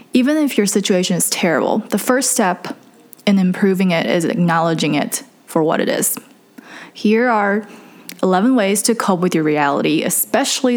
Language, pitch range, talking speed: English, 175-235 Hz, 160 wpm